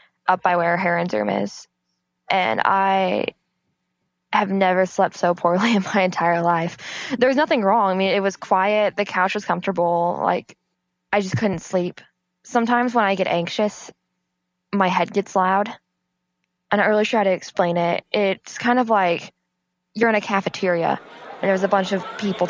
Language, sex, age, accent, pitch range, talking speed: English, female, 10-29, American, 170-195 Hz, 175 wpm